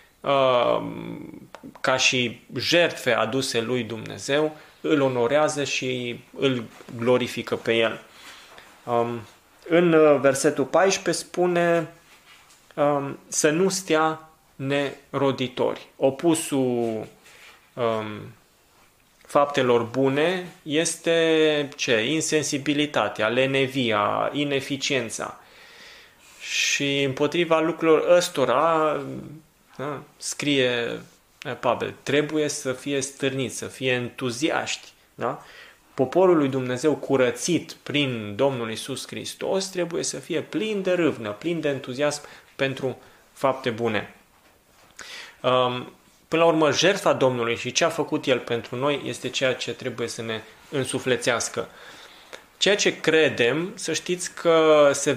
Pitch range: 125-155 Hz